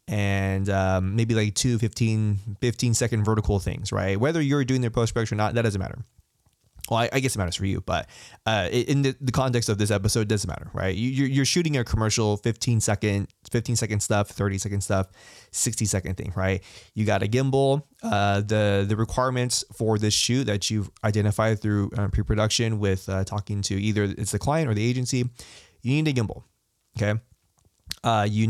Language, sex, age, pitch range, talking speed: English, male, 20-39, 100-120 Hz, 195 wpm